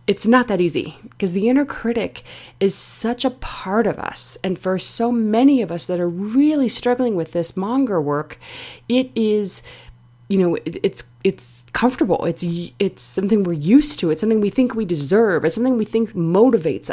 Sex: female